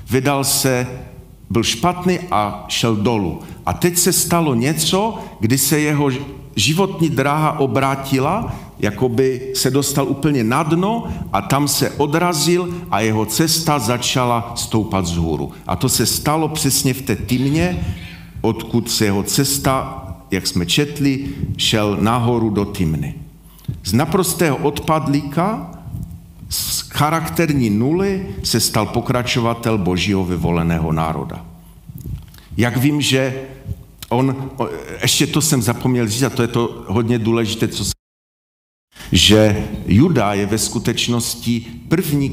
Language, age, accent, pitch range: Czech, 50-69, native, 105-150 Hz